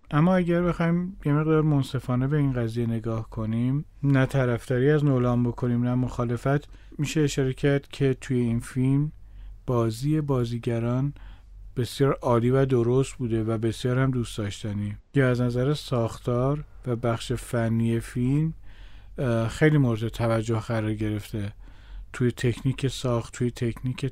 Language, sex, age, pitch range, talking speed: Persian, male, 40-59, 115-140 Hz, 135 wpm